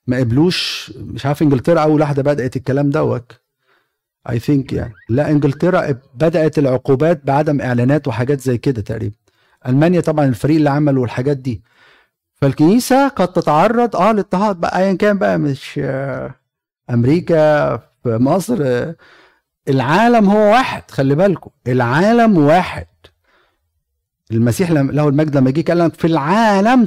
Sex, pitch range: male, 125-175 Hz